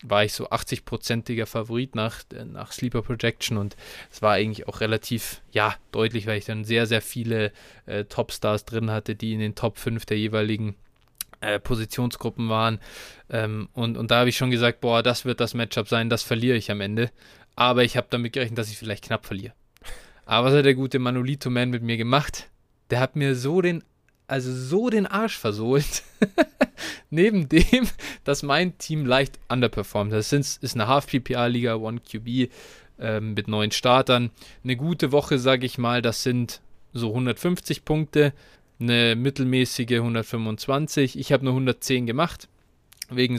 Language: German